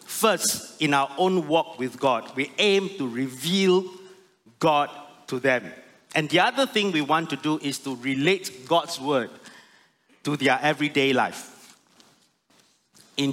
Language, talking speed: English, 145 wpm